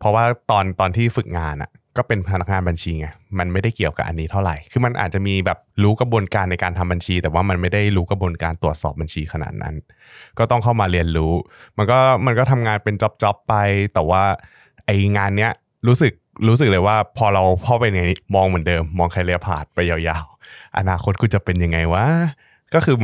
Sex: male